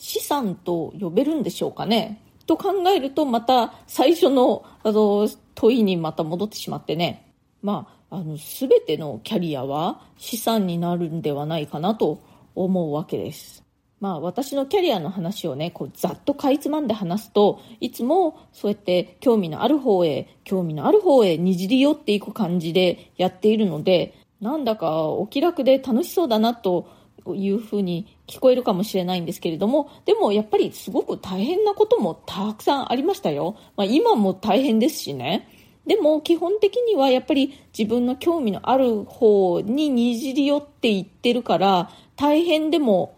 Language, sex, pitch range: Japanese, female, 185-265 Hz